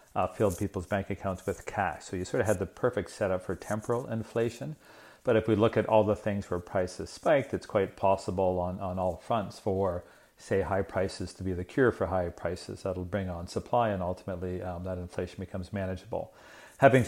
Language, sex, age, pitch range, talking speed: English, male, 40-59, 95-110 Hz, 205 wpm